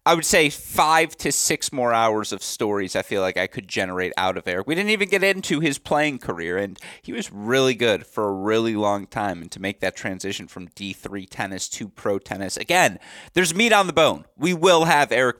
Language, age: English, 30-49